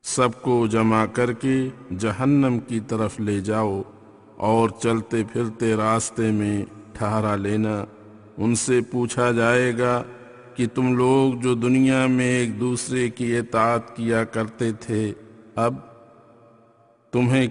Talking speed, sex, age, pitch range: 110 wpm, male, 50-69, 110-125 Hz